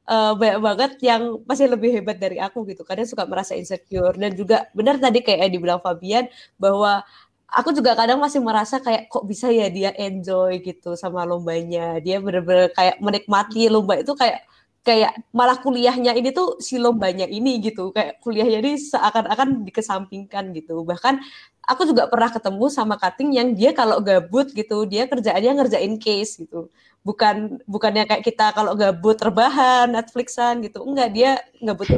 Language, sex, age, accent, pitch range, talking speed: Indonesian, female, 20-39, native, 195-245 Hz, 165 wpm